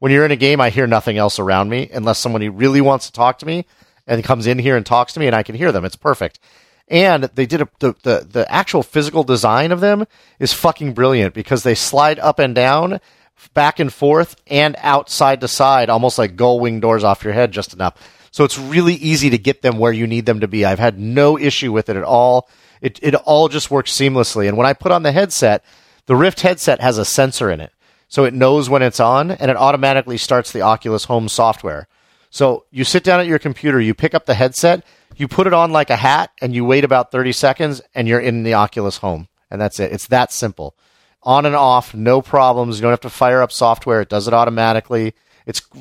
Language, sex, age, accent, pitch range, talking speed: English, male, 40-59, American, 115-145 Hz, 240 wpm